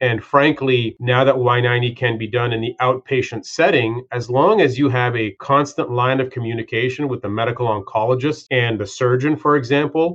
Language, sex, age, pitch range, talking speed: English, male, 30-49, 120-140 Hz, 185 wpm